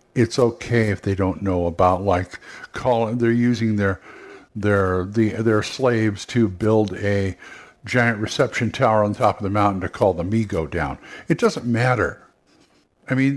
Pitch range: 105-135 Hz